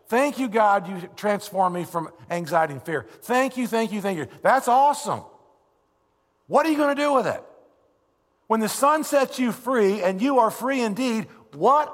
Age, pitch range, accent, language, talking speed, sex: 50-69, 170-250 Hz, American, English, 190 wpm, male